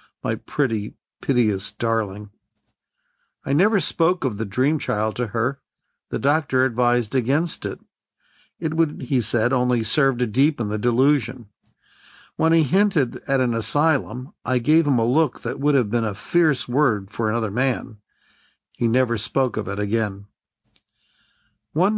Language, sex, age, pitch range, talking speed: English, male, 50-69, 115-150 Hz, 155 wpm